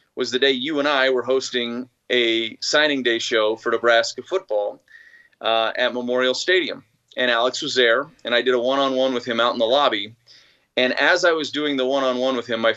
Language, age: English, 30-49